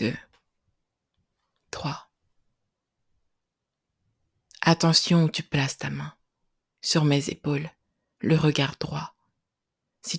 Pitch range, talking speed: 145-165 Hz, 80 wpm